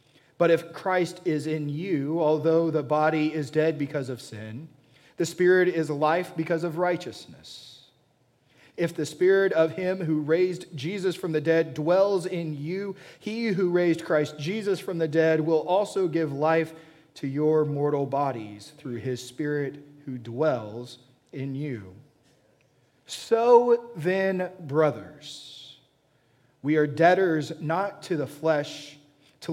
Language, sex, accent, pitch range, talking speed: English, male, American, 135-165 Hz, 140 wpm